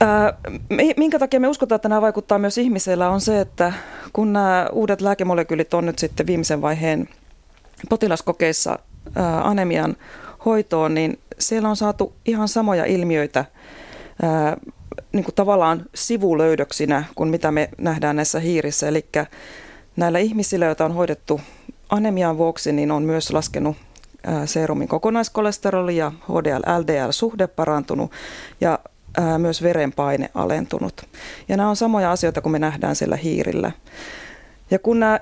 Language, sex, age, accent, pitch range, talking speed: Finnish, female, 30-49, native, 155-205 Hz, 125 wpm